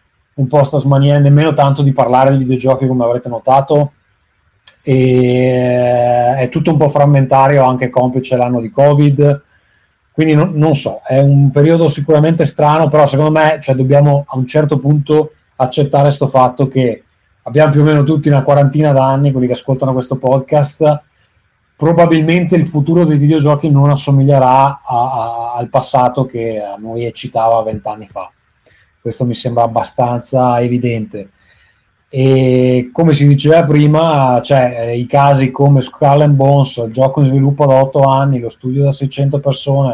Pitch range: 120-145 Hz